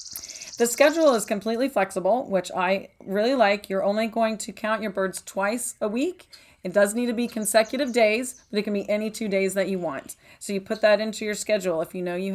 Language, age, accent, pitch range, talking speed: English, 30-49, American, 185-230 Hz, 230 wpm